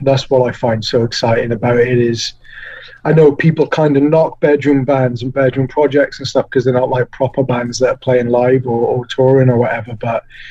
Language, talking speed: English, 215 wpm